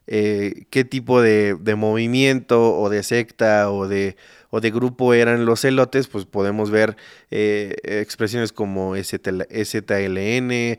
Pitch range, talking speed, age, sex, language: 105-125 Hz, 130 wpm, 30-49, male, Spanish